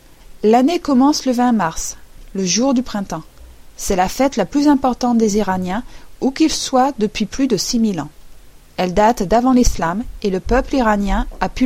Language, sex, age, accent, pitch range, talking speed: French, female, 40-59, French, 195-255 Hz, 180 wpm